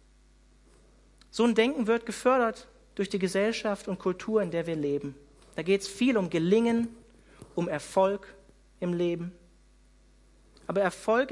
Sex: male